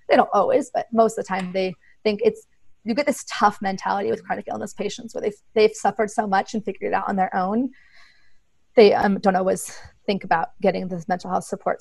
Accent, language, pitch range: American, English, 200-230 Hz